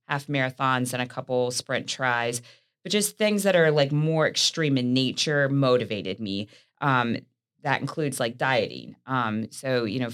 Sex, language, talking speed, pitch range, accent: female, English, 165 wpm, 125-140 Hz, American